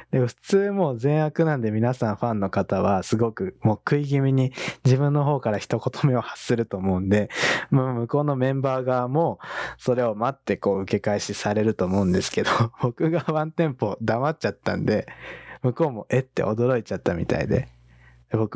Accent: native